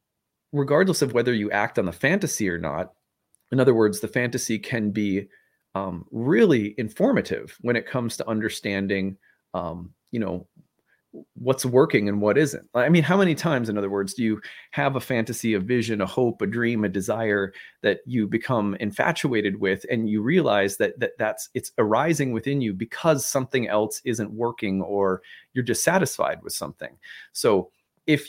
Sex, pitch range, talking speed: male, 105-135 Hz, 170 wpm